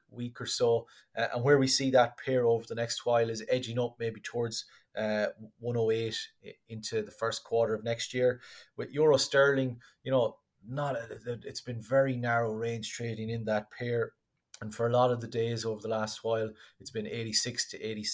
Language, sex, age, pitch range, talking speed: English, male, 30-49, 110-120 Hz, 190 wpm